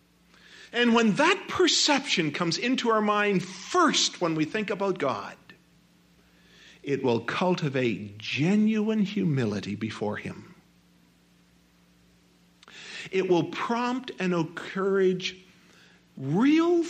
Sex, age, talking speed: male, 50-69, 95 wpm